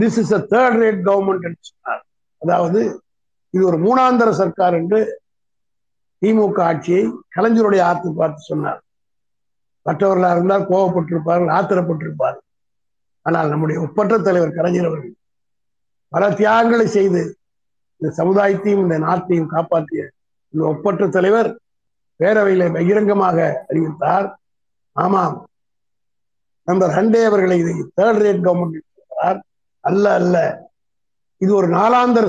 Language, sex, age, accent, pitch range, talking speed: Tamil, male, 50-69, native, 170-205 Hz, 95 wpm